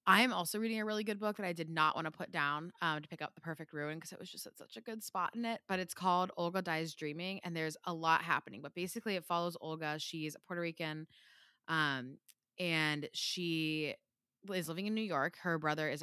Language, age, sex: English, 20-39, female